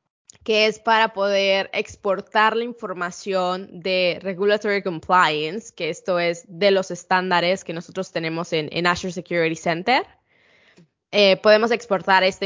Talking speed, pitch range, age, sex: 135 wpm, 180-205 Hz, 10-29, female